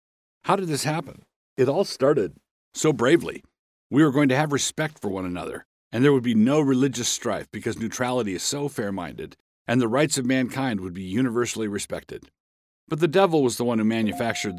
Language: English